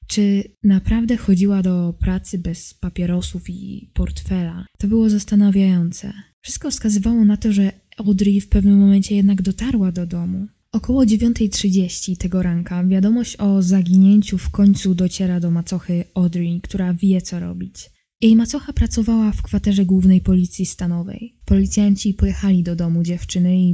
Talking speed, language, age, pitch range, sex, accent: 140 wpm, Polish, 10-29, 180-205 Hz, female, native